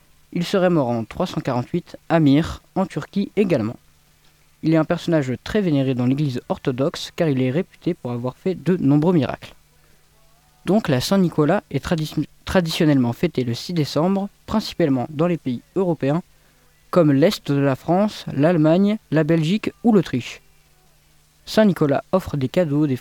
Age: 20-39